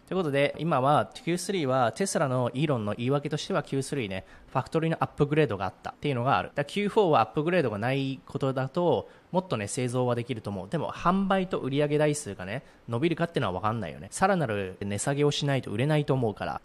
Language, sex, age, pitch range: Japanese, male, 20-39, 115-155 Hz